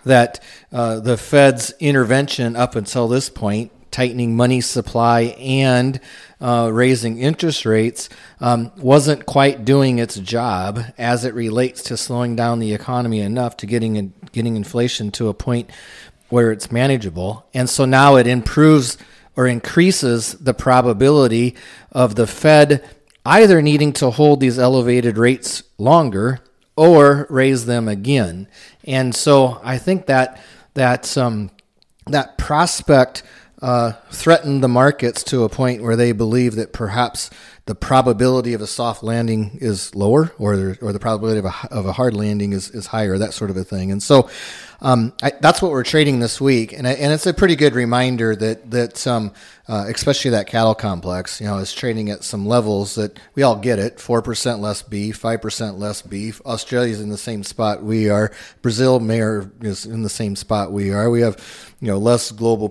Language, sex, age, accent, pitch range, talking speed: English, male, 40-59, American, 110-130 Hz, 175 wpm